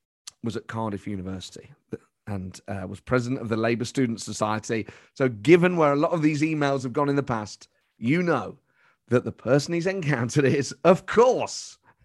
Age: 30-49